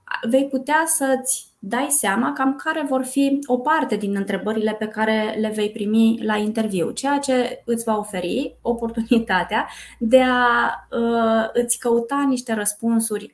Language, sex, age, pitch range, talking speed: Romanian, female, 20-39, 210-255 Hz, 145 wpm